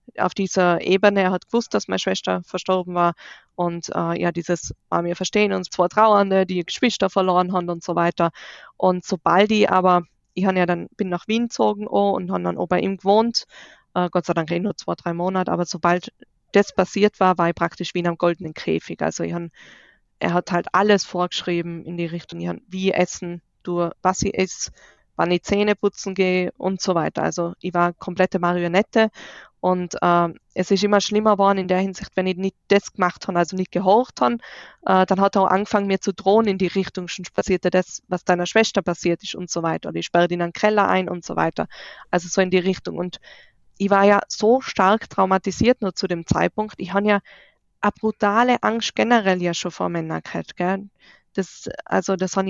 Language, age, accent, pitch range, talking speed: German, 20-39, German, 175-195 Hz, 215 wpm